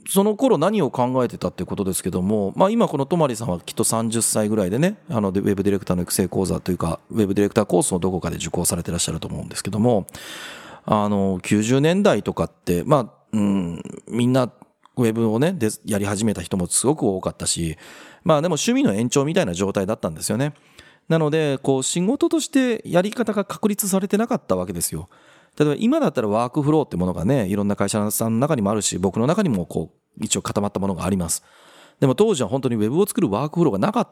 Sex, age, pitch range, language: male, 30-49, 100-155 Hz, Japanese